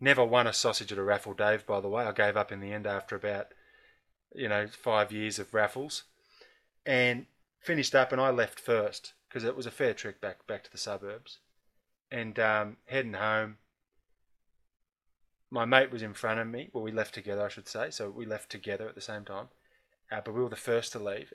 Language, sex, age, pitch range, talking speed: English, male, 20-39, 105-130 Hz, 215 wpm